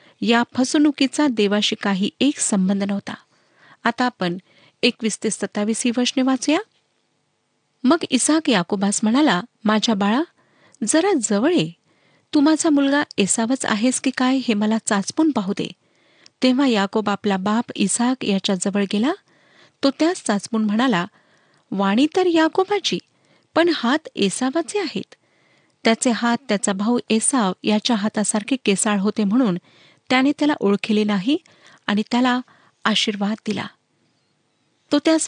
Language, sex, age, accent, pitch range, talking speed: Marathi, female, 40-59, native, 205-265 Hz, 110 wpm